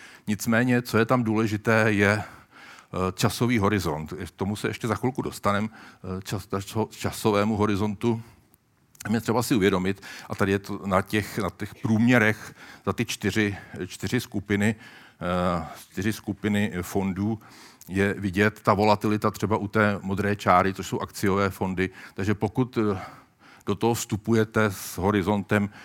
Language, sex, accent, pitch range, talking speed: Czech, male, native, 90-105 Hz, 130 wpm